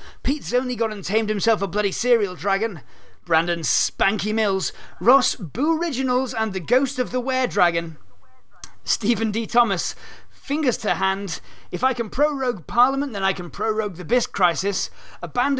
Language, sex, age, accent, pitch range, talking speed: English, male, 30-49, British, 195-255 Hz, 165 wpm